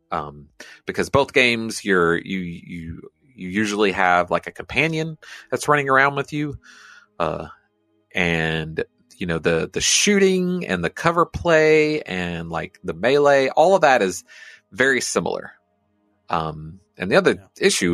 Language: English